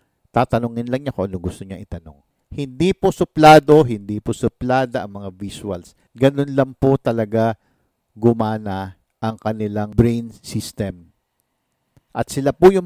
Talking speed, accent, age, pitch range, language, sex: 140 wpm, Filipino, 50-69, 110-150 Hz, English, male